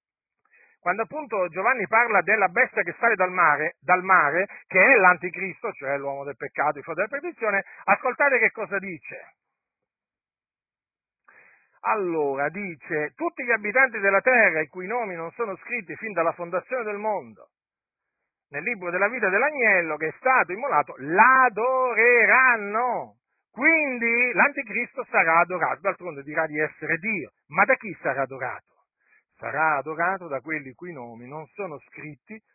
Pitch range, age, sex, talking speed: 155-230 Hz, 50-69, male, 145 wpm